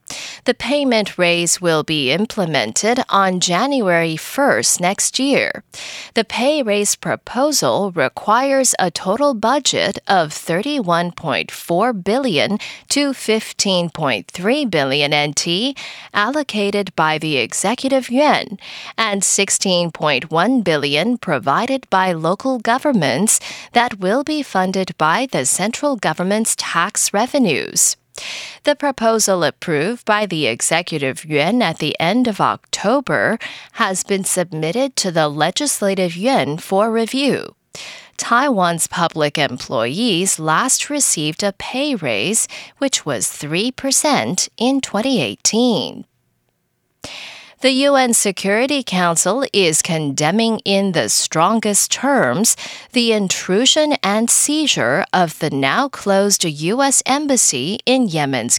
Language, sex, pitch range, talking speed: English, female, 170-255 Hz, 105 wpm